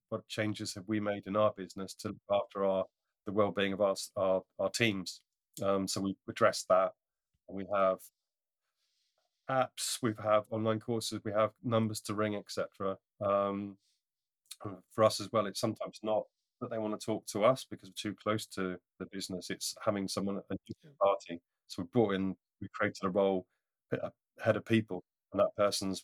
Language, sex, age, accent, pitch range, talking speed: English, male, 30-49, British, 95-110 Hz, 185 wpm